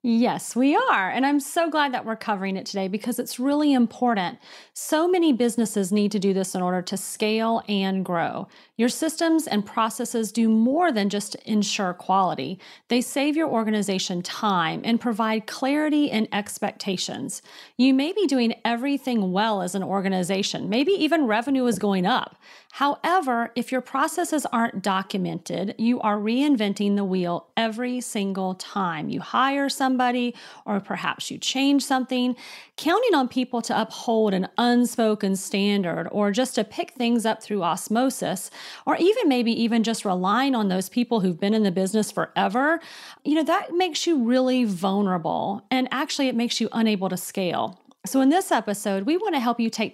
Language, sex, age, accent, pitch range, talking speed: English, female, 40-59, American, 200-265 Hz, 170 wpm